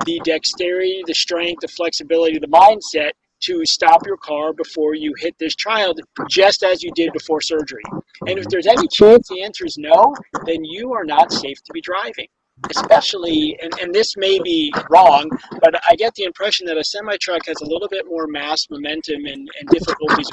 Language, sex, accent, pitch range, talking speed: English, male, American, 155-210 Hz, 190 wpm